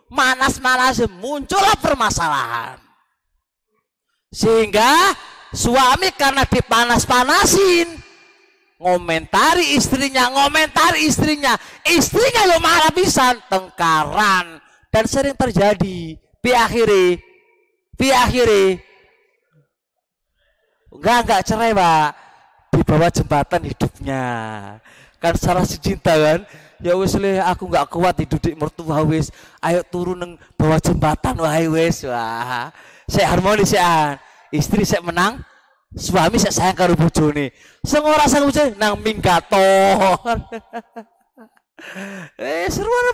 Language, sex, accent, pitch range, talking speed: Indonesian, male, native, 170-275 Hz, 90 wpm